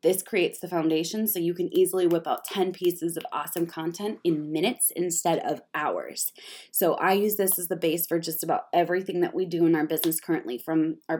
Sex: female